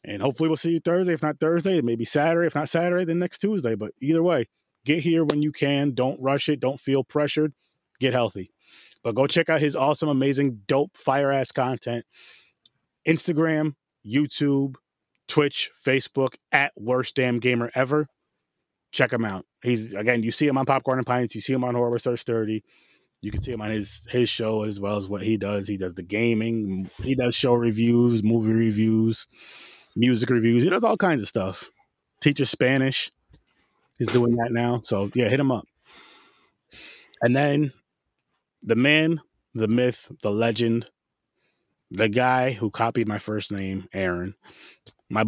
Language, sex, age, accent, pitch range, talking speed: English, male, 20-39, American, 115-145 Hz, 175 wpm